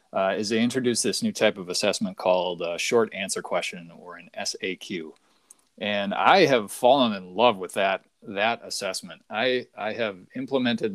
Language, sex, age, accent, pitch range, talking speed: English, male, 30-49, American, 95-150 Hz, 170 wpm